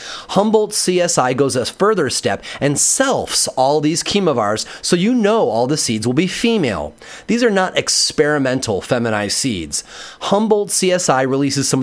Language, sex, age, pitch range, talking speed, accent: English, male, 30-49, 135-200 Hz, 150 wpm, American